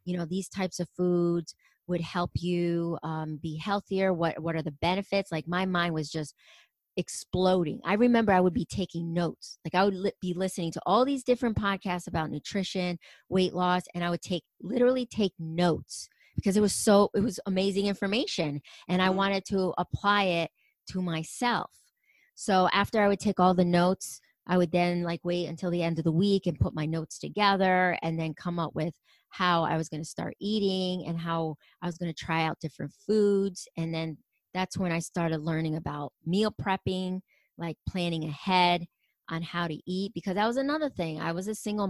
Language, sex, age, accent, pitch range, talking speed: English, female, 30-49, American, 170-200 Hz, 200 wpm